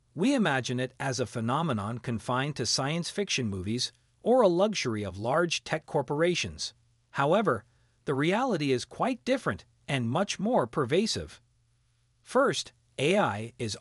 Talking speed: 135 wpm